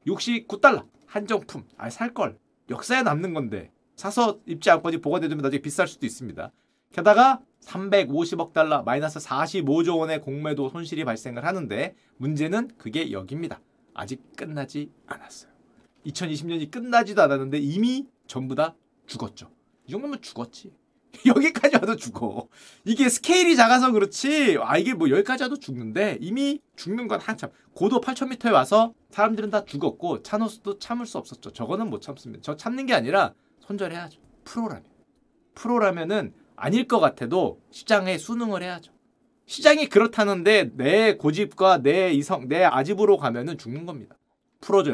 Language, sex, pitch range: Korean, male, 155-240 Hz